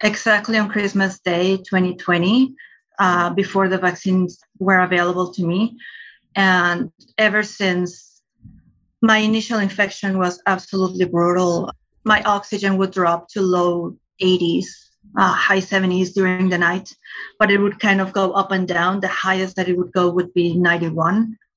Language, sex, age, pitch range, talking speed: English, female, 30-49, 180-205 Hz, 145 wpm